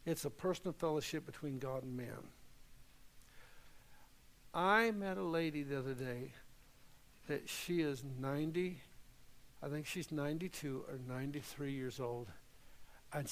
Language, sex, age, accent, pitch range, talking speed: English, male, 60-79, American, 135-180 Hz, 125 wpm